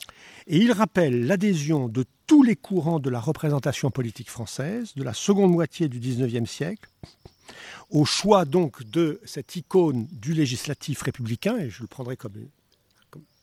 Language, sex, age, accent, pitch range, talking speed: French, male, 50-69, French, 130-190 Hz, 155 wpm